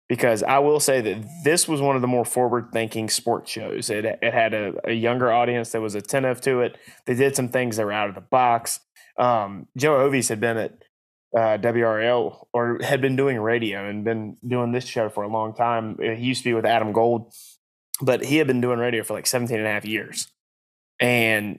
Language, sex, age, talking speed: English, male, 20-39, 220 wpm